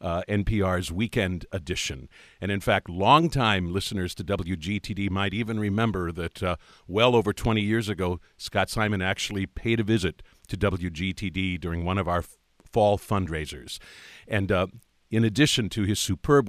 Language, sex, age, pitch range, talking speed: English, male, 50-69, 90-115 Hz, 155 wpm